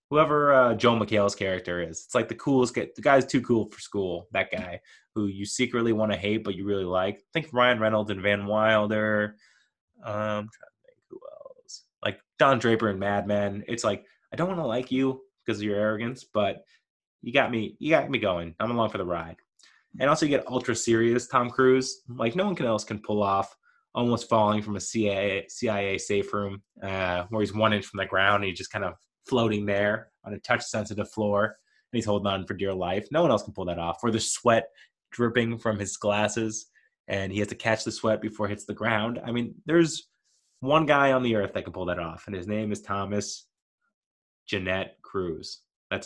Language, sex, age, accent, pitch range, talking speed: English, male, 20-39, American, 100-120 Hz, 220 wpm